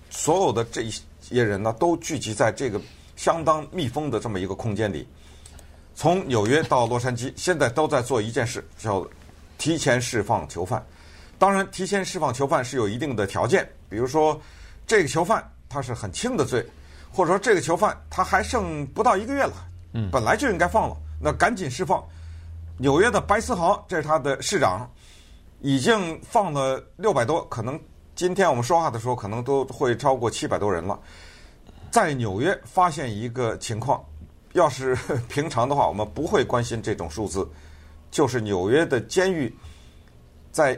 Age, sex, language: 50-69, male, Chinese